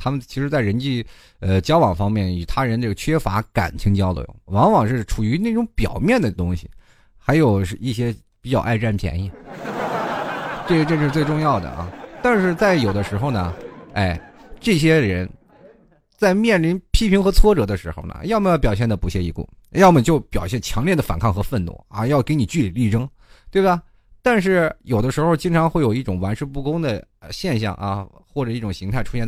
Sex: male